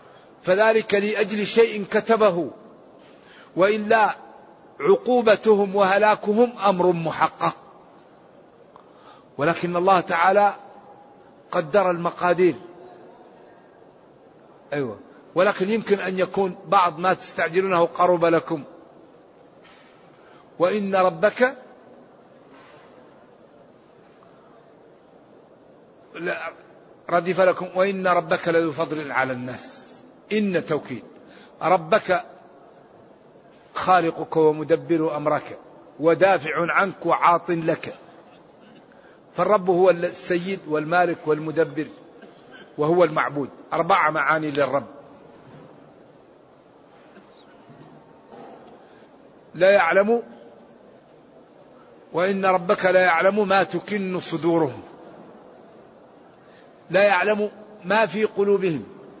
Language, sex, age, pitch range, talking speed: Arabic, male, 50-69, 165-205 Hz, 70 wpm